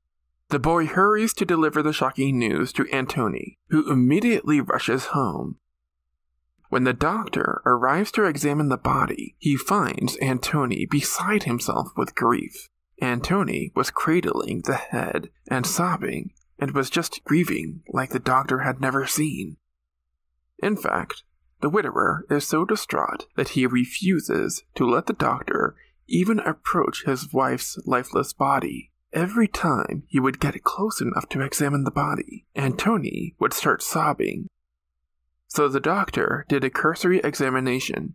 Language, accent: English, American